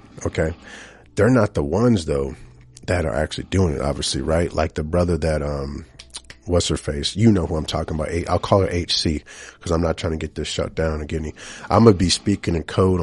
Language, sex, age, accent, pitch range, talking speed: English, male, 40-59, American, 80-95 Hz, 220 wpm